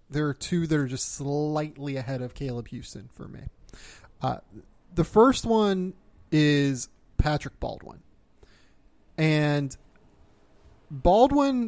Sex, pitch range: male, 125-155 Hz